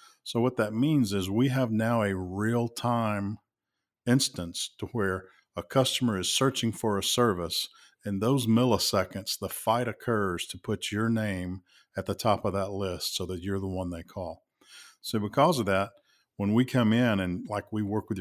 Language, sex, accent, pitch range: English, male, American, 95-115 Hz